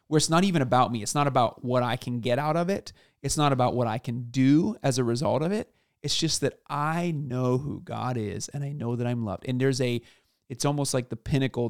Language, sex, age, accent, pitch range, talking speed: English, male, 30-49, American, 125-150 Hz, 255 wpm